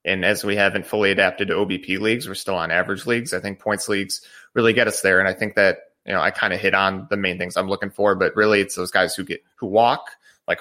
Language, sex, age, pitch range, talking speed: English, male, 30-49, 95-120 Hz, 275 wpm